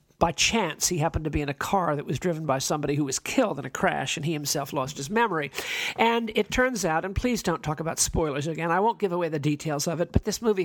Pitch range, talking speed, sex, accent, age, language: 150-205 Hz, 270 wpm, male, American, 50-69, English